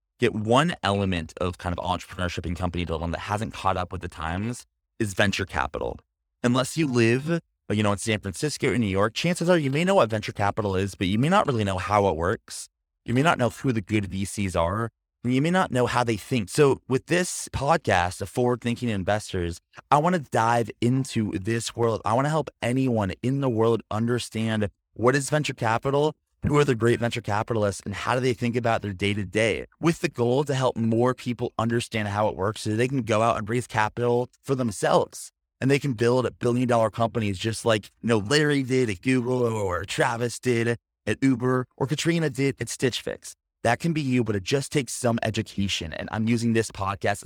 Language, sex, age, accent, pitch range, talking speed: English, male, 30-49, American, 100-130 Hz, 215 wpm